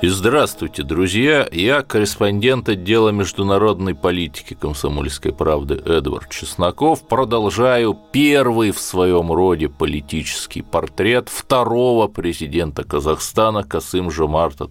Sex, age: male, 30-49